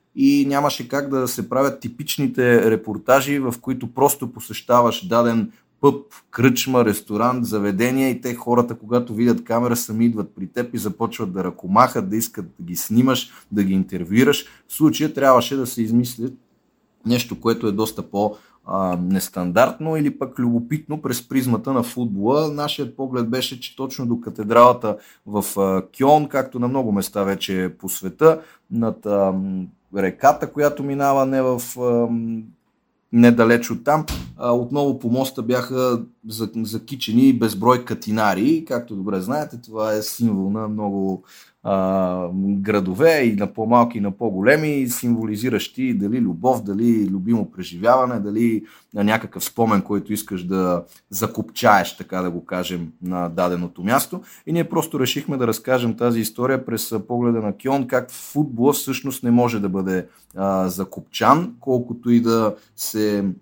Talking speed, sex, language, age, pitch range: 145 wpm, male, Bulgarian, 30-49, 105-130 Hz